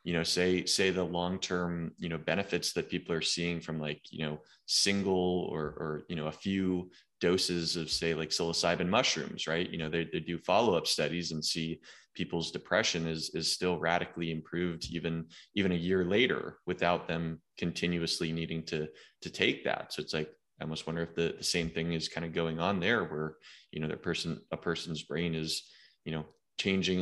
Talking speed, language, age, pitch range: 200 wpm, English, 20-39, 80-90 Hz